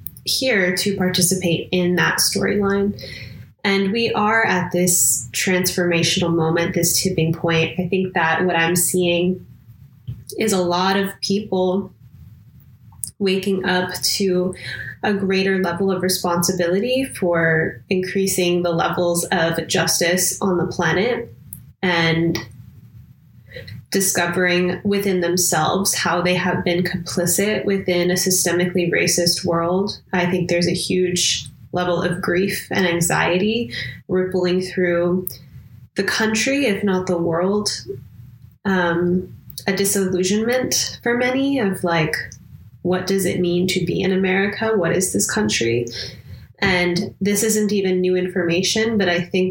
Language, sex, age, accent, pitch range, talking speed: English, female, 20-39, American, 165-190 Hz, 125 wpm